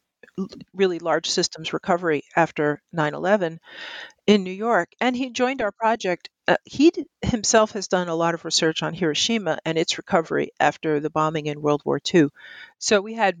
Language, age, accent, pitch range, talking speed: English, 50-69, American, 155-210 Hz, 170 wpm